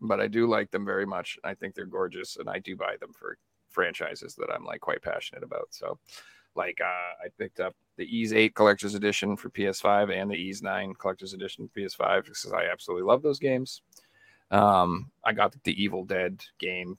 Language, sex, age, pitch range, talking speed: English, male, 40-59, 100-135 Hz, 210 wpm